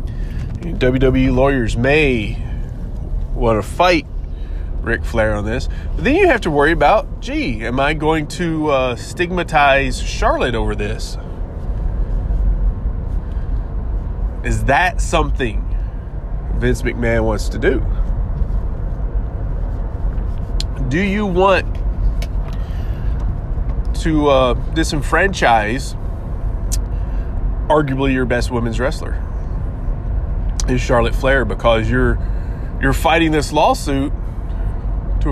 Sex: male